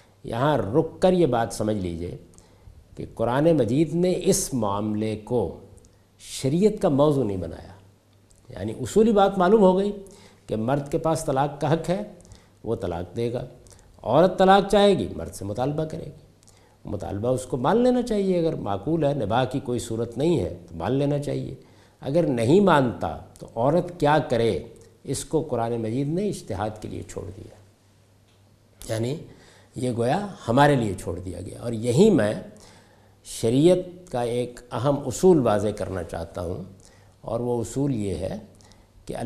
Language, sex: Urdu, male